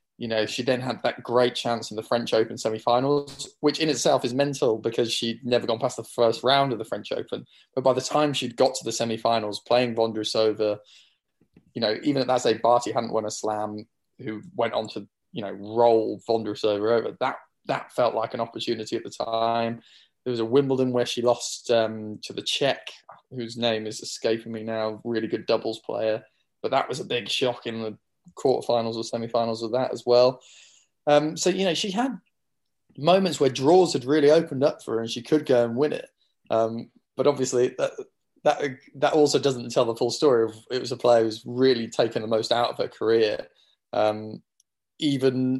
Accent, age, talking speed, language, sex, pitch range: British, 20-39, 205 wpm, English, male, 115-140 Hz